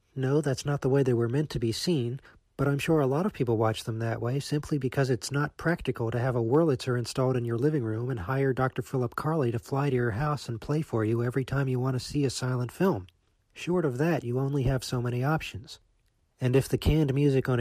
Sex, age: male, 40-59